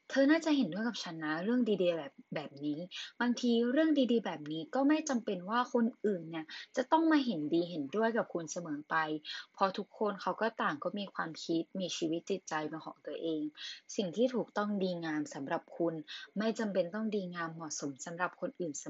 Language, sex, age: Thai, female, 20-39